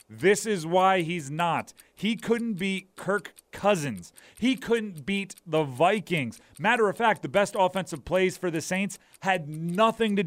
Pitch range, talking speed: 170-205 Hz, 165 wpm